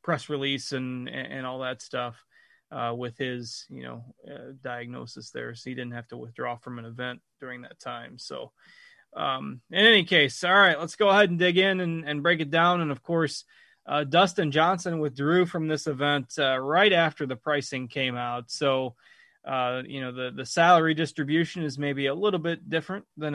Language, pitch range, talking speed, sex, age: English, 130-155 Hz, 200 wpm, male, 20-39